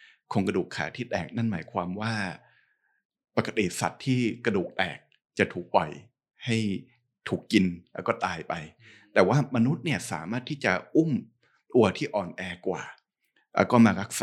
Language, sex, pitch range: Thai, male, 95-125 Hz